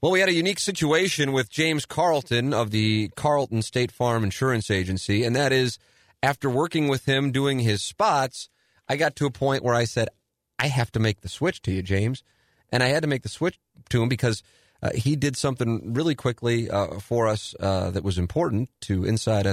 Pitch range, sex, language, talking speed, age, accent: 105-135 Hz, male, English, 210 wpm, 30-49, American